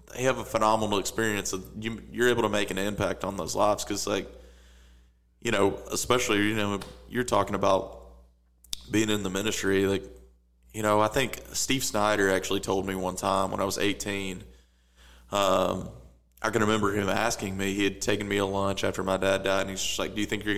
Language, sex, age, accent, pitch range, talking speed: English, male, 20-39, American, 90-110 Hz, 200 wpm